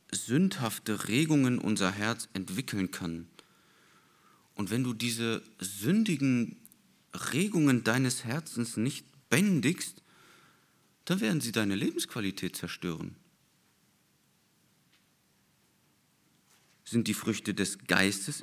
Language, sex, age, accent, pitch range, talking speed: German, male, 40-59, German, 95-150 Hz, 90 wpm